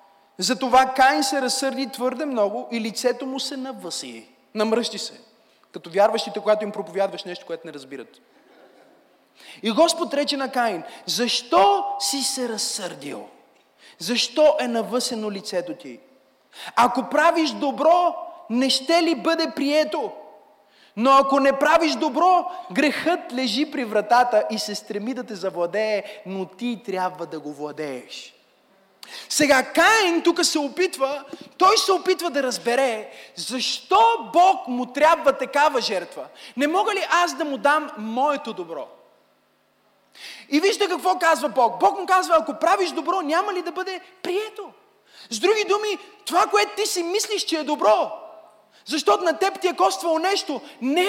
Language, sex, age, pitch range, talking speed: Bulgarian, male, 30-49, 245-360 Hz, 145 wpm